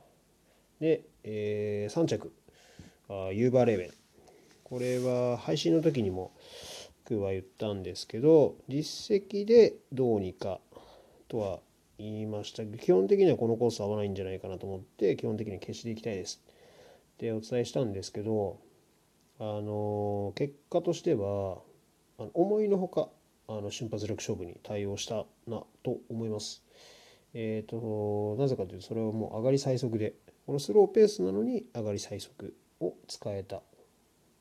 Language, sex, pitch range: Japanese, male, 100-140 Hz